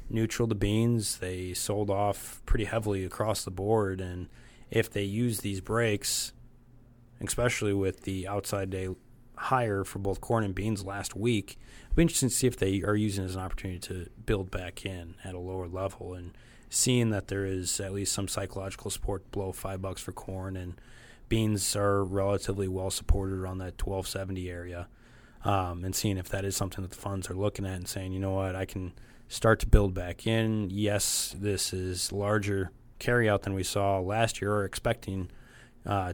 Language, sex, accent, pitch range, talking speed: English, male, American, 95-110 Hz, 190 wpm